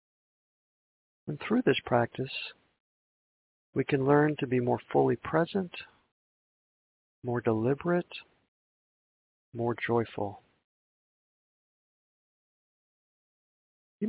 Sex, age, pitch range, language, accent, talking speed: male, 40-59, 110-145 Hz, English, American, 70 wpm